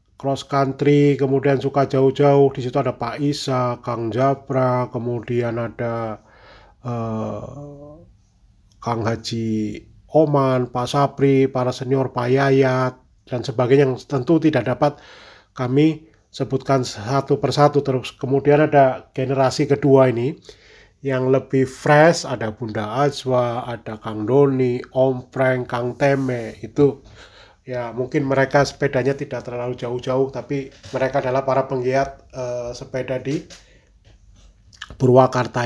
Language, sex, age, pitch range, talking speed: Indonesian, male, 30-49, 120-140 Hz, 115 wpm